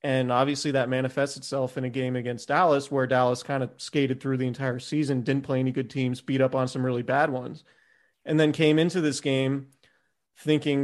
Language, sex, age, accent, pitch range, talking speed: English, male, 30-49, American, 135-155 Hz, 210 wpm